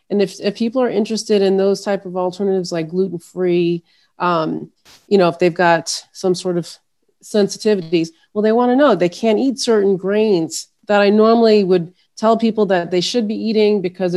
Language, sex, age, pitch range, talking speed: English, female, 30-49, 175-205 Hz, 185 wpm